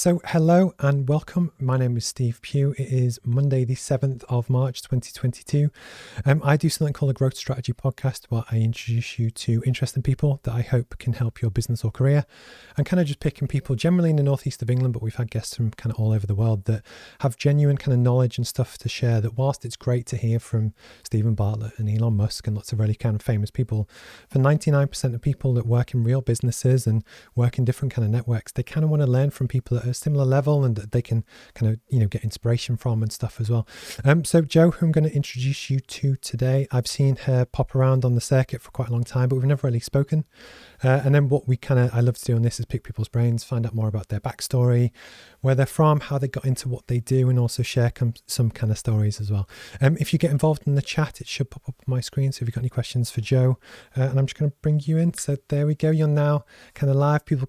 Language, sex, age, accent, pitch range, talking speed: English, male, 30-49, British, 120-140 Hz, 260 wpm